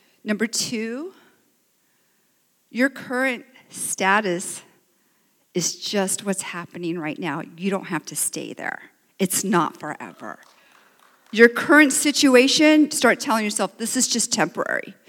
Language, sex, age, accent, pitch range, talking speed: English, female, 50-69, American, 195-250 Hz, 120 wpm